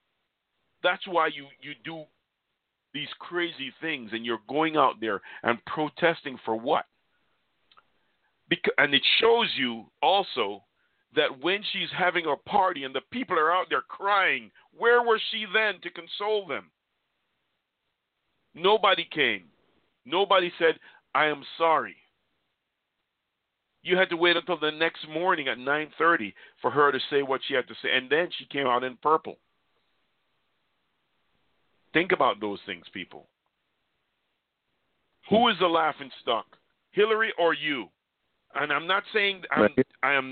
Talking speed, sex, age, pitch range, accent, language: 145 wpm, male, 50-69, 140-190 Hz, American, English